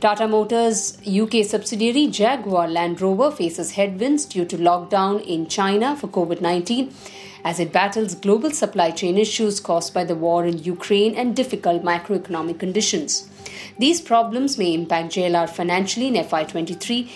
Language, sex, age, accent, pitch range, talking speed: English, female, 50-69, Indian, 180-220 Hz, 145 wpm